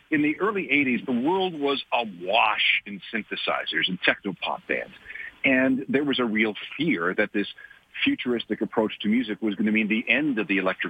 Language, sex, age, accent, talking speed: English, male, 50-69, American, 185 wpm